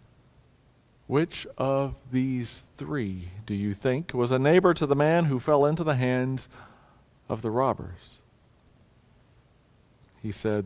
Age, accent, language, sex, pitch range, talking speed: 40-59, American, English, male, 115-145 Hz, 130 wpm